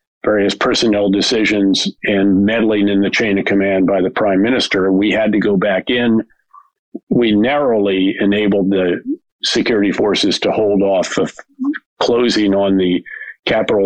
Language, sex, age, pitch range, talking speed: English, male, 50-69, 100-120 Hz, 145 wpm